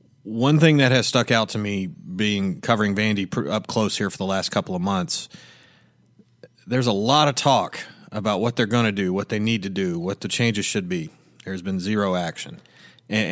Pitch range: 105-135 Hz